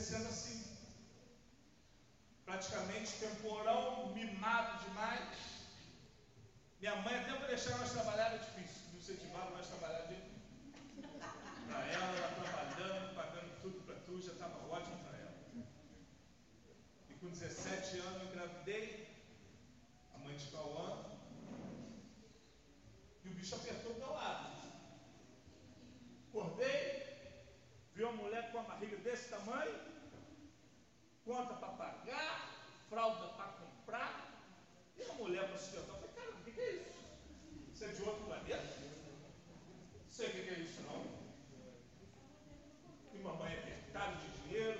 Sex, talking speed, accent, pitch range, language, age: male, 130 wpm, Brazilian, 175-225 Hz, Portuguese, 40-59